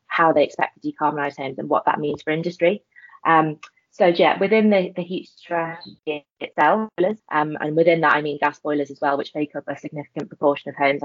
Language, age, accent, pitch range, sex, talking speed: English, 20-39, British, 145-170 Hz, female, 210 wpm